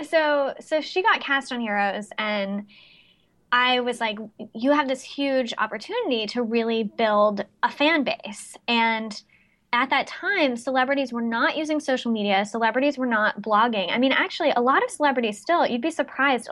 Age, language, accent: 10-29, English, American